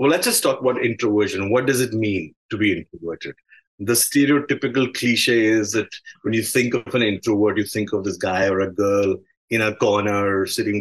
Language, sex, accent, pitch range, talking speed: English, male, Indian, 105-135 Hz, 200 wpm